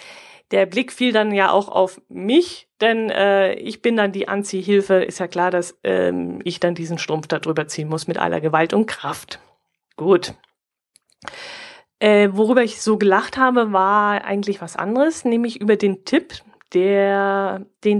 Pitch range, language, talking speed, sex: 190-265 Hz, German, 165 wpm, female